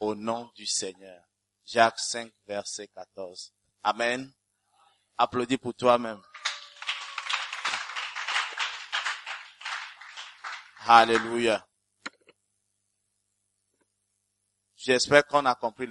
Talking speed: 65 wpm